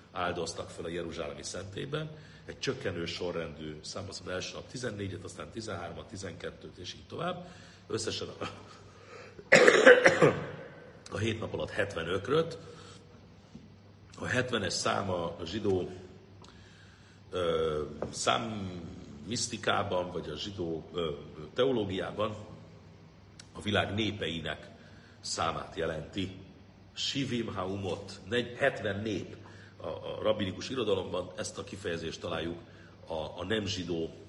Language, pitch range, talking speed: Hungarian, 85-105 Hz, 105 wpm